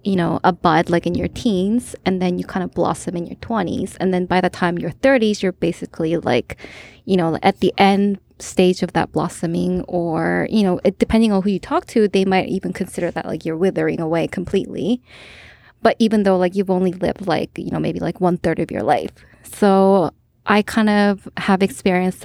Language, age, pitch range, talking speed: English, 20-39, 185-225 Hz, 215 wpm